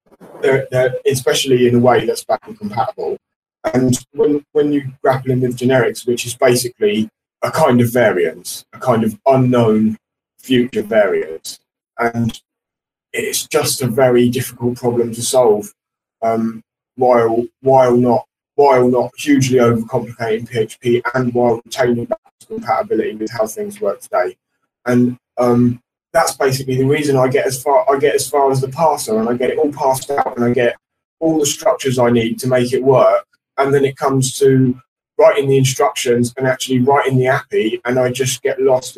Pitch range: 120-150 Hz